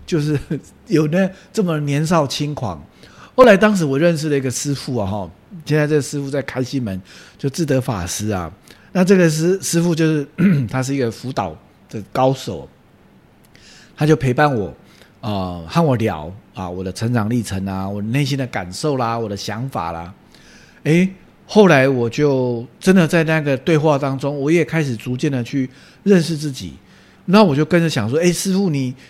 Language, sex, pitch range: English, male, 110-165 Hz